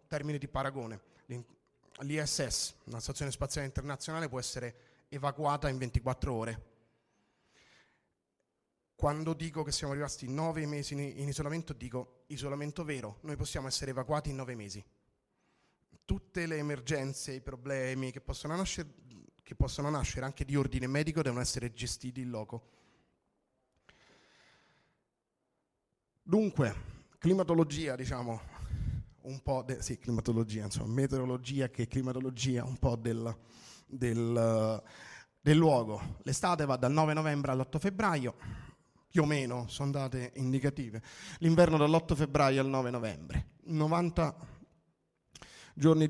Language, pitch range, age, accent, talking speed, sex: Italian, 125-150 Hz, 30-49, native, 115 wpm, male